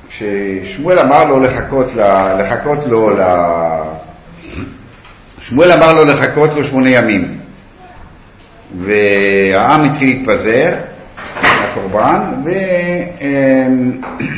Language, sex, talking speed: Hebrew, male, 50 wpm